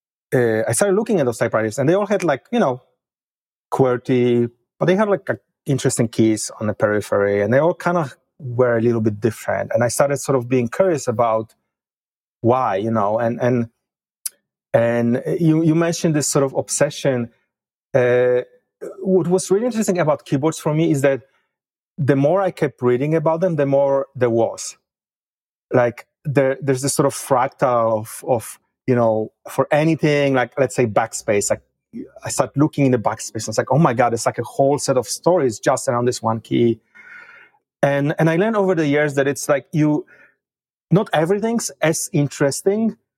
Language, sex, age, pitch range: English, male, 30-49, 120-160 Hz